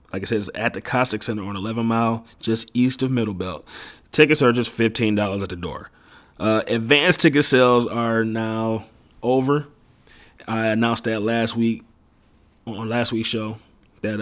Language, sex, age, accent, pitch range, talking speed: English, male, 30-49, American, 110-125 Hz, 170 wpm